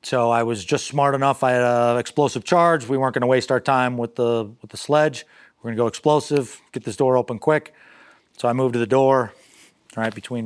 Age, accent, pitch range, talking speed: 30-49, American, 115-130 Hz, 235 wpm